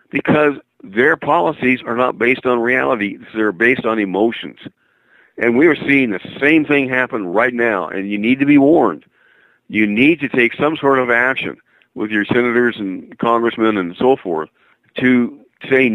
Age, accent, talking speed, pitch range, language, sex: 50-69, American, 175 wpm, 105-125 Hz, English, male